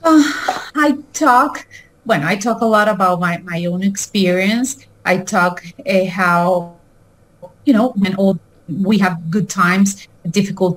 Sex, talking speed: female, 150 wpm